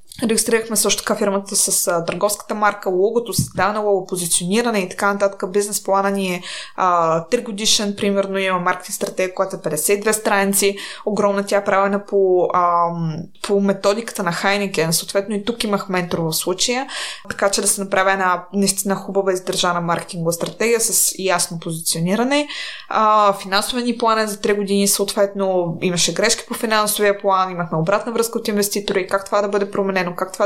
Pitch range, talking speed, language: 190-215 Hz, 165 wpm, Bulgarian